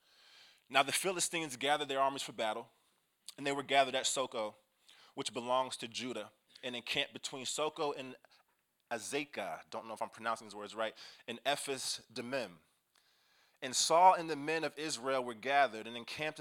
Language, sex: English, male